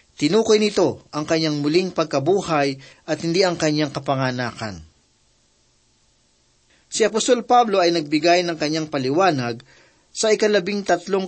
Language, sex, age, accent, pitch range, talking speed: Filipino, male, 40-59, native, 140-175 Hz, 115 wpm